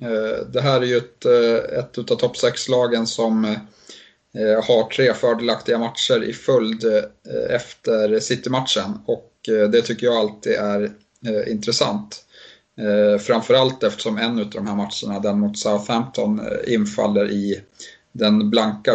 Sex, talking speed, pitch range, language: male, 140 wpm, 105-130 Hz, Swedish